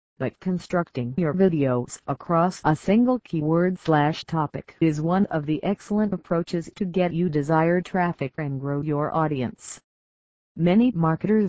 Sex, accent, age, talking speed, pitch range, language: female, American, 50-69, 140 wpm, 140-180 Hz, English